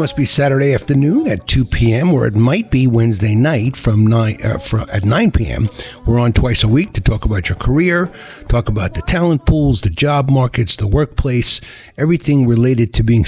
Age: 60-79